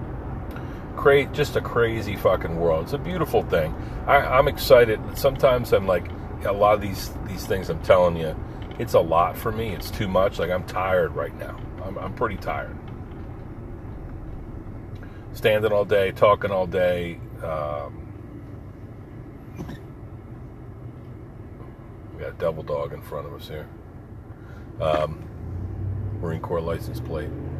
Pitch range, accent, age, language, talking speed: 90-110 Hz, American, 40-59, English, 135 wpm